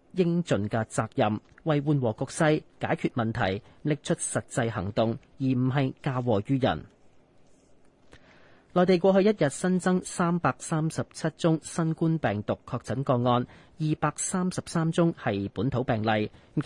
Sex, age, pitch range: male, 40-59, 115-160 Hz